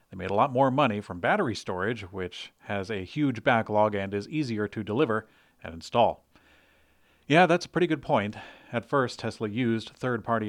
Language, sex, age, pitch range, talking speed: English, male, 40-59, 105-125 Hz, 175 wpm